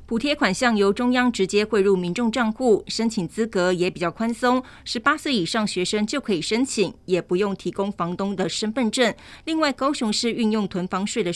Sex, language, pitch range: female, Chinese, 185-235 Hz